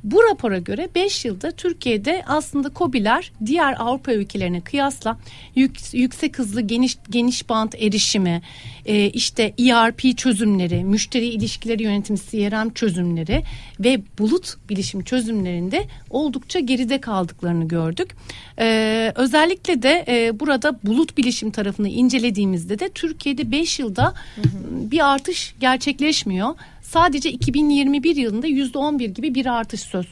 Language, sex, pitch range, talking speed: Turkish, female, 200-285 Hz, 110 wpm